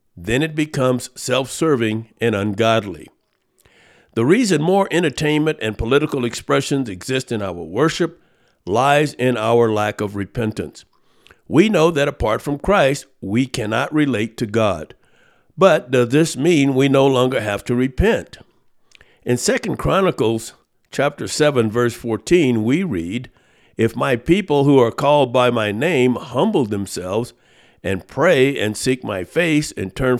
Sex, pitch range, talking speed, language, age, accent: male, 115-150 Hz, 145 wpm, English, 60-79, American